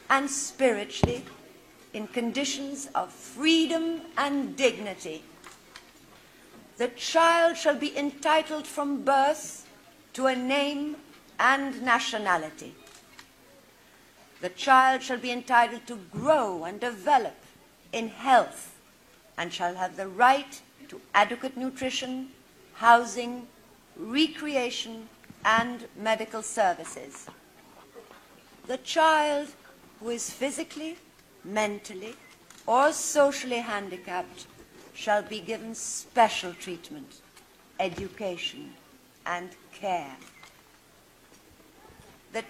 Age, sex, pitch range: 60-79, female, 210-280 Hz